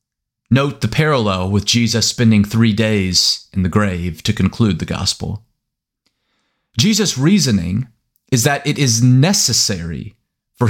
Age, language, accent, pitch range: 30-49, English, American, 105-125 Hz